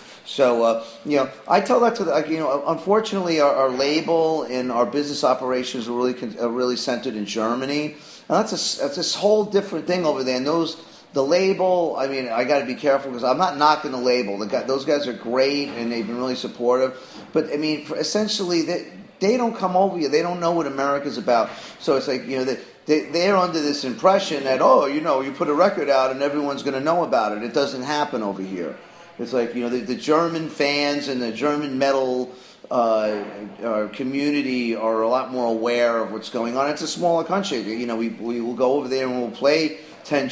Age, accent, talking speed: 40-59, American, 230 wpm